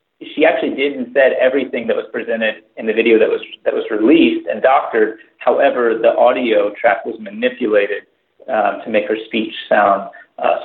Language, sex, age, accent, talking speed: English, male, 40-59, American, 175 wpm